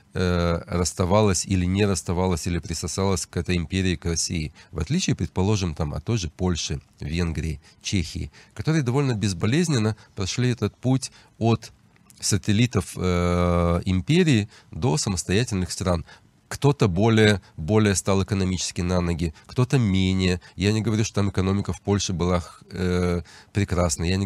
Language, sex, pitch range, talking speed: English, male, 90-105 Hz, 140 wpm